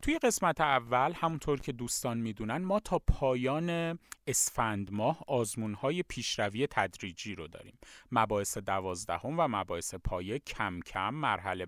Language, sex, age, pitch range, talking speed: Persian, male, 30-49, 115-165 Hz, 130 wpm